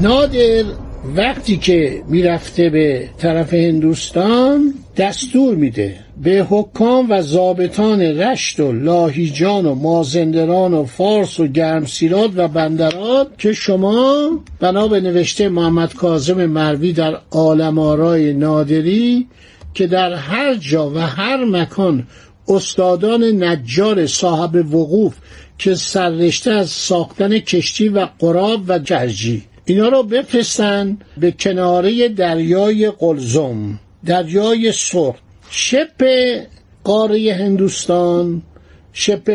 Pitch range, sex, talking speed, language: 165-215 Hz, male, 100 wpm, Persian